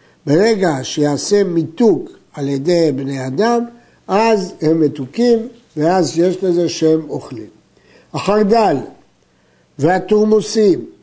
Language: Hebrew